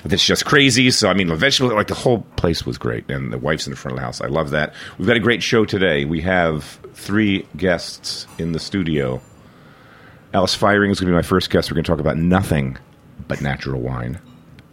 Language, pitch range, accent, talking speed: English, 70-95 Hz, American, 230 wpm